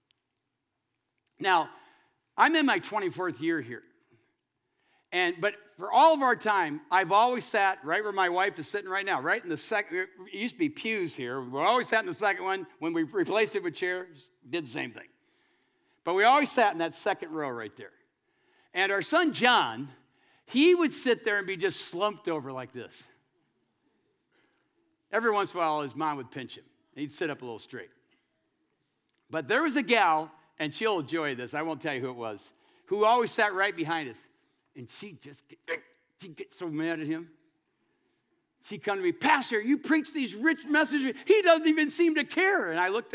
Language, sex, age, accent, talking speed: English, male, 60-79, American, 200 wpm